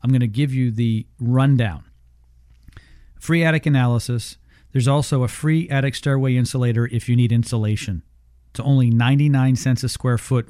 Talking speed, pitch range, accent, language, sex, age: 160 wpm, 120-150 Hz, American, English, male, 40-59